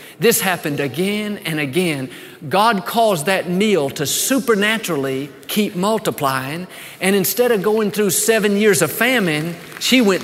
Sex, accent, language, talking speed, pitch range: male, American, English, 140 wpm, 165-225 Hz